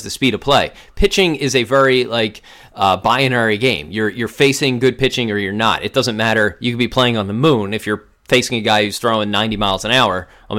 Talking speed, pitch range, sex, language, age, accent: 240 wpm, 110-135 Hz, male, English, 30-49, American